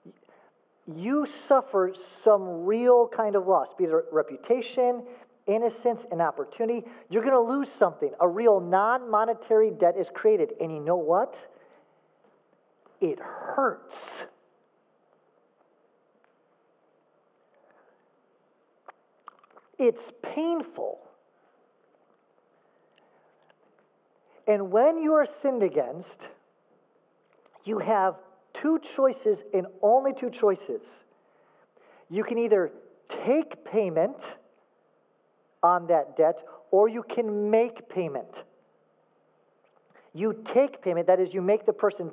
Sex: male